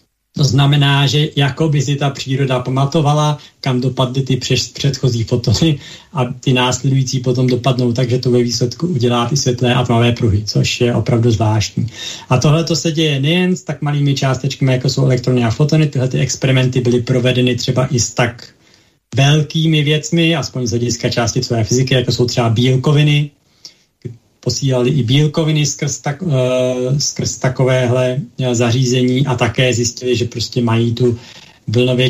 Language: Slovak